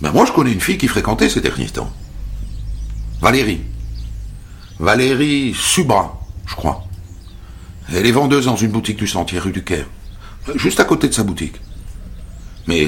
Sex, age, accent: male, 60-79, French